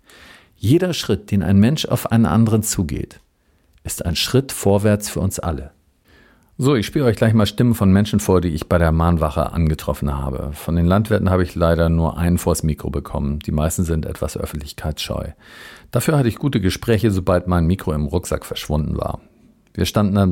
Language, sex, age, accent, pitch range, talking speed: German, male, 50-69, German, 80-100 Hz, 190 wpm